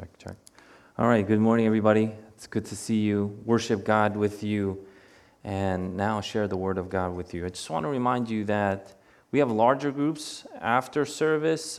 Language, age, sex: English, 30-49, male